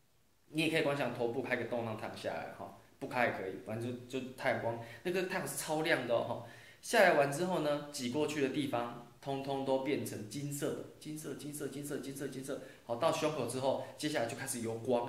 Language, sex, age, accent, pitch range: Chinese, male, 20-39, native, 115-140 Hz